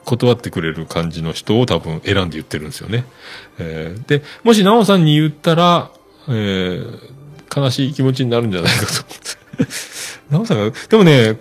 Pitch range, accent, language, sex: 90-150 Hz, native, Japanese, male